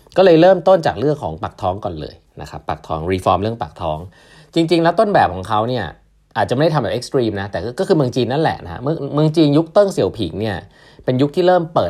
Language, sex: Thai, male